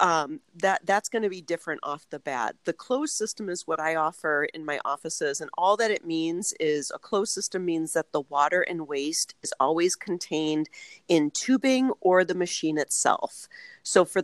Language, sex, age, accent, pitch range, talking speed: English, female, 40-59, American, 155-190 Hz, 195 wpm